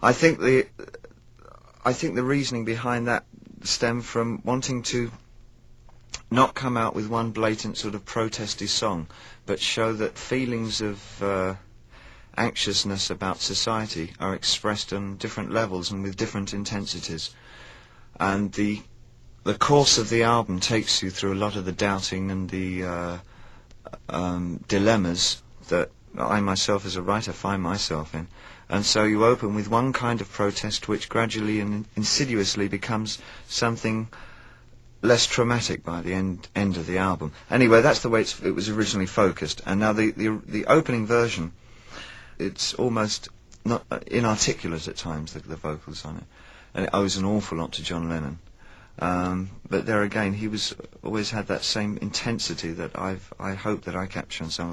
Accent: British